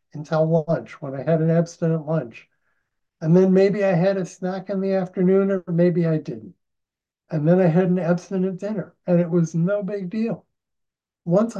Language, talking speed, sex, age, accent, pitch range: English, 185 wpm, male, 60-79, American, 150-195 Hz